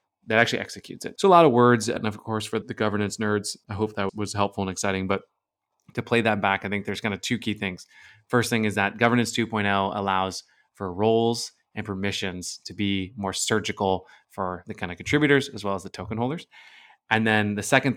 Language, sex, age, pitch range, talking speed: English, male, 20-39, 100-115 Hz, 220 wpm